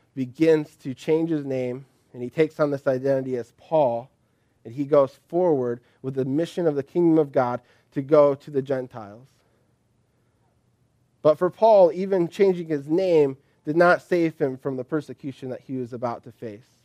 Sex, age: male, 20-39